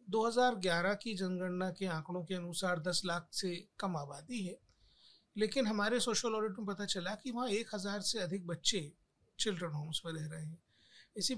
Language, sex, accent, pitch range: Hindi, male, native, 170-210 Hz